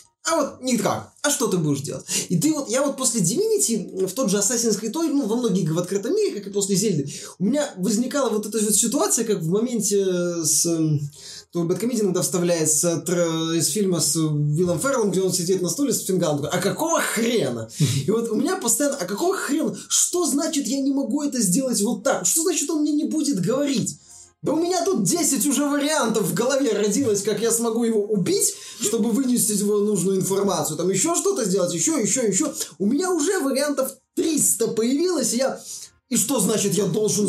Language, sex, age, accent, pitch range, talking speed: Russian, male, 20-39, native, 185-265 Hz, 200 wpm